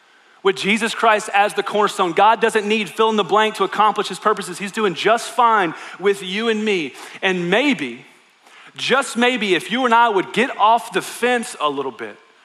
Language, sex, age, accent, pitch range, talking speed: English, male, 30-49, American, 155-235 Hz, 200 wpm